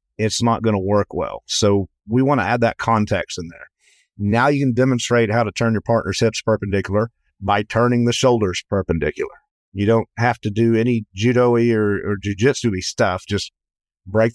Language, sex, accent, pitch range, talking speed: English, male, American, 100-120 Hz, 185 wpm